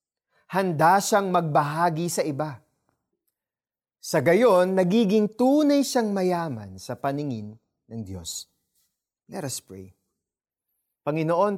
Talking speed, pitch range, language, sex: 100 wpm, 145-205 Hz, Filipino, male